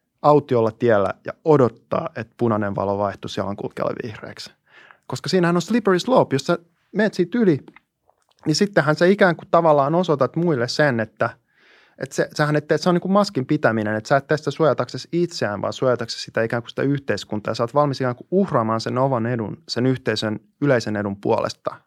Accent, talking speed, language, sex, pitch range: native, 190 wpm, Finnish, male, 115-155 Hz